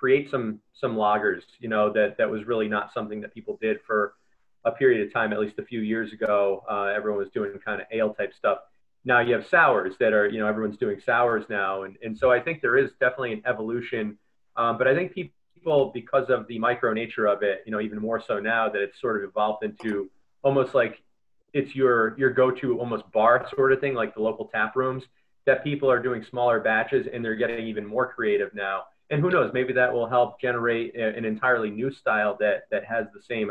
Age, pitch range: 30-49, 105-130 Hz